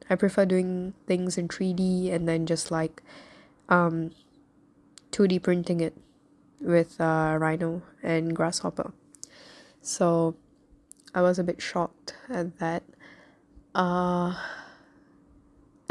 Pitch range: 170-200 Hz